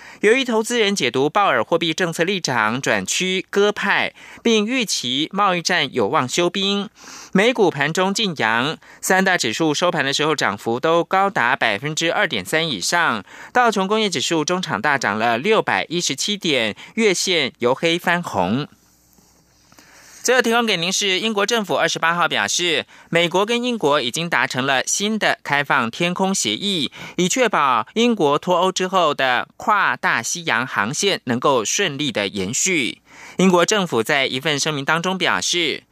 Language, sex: French, male